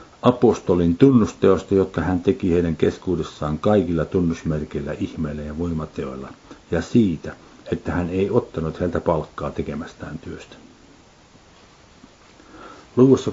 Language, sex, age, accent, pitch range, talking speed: Finnish, male, 50-69, native, 85-100 Hz, 105 wpm